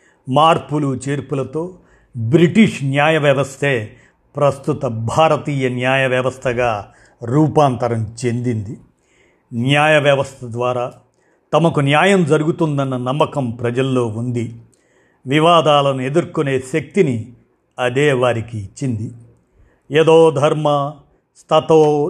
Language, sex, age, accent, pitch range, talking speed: Telugu, male, 50-69, native, 120-155 Hz, 75 wpm